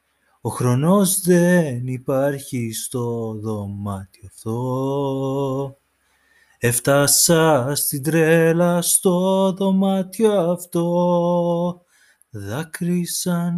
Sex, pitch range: male, 130-175 Hz